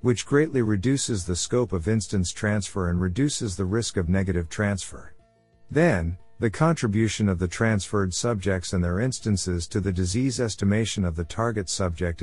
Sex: male